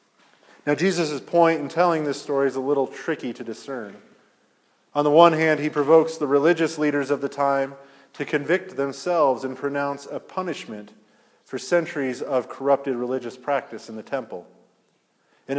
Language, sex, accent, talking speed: English, male, American, 160 wpm